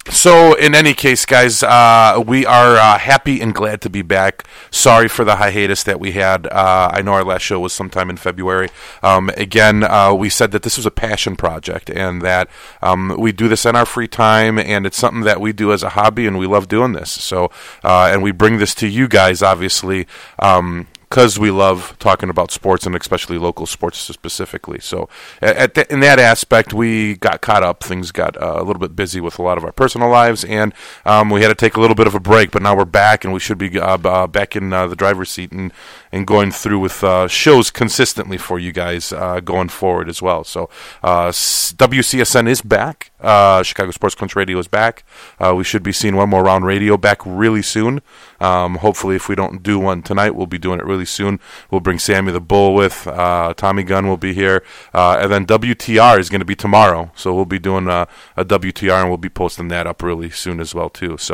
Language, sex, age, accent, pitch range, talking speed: English, male, 30-49, American, 95-110 Hz, 230 wpm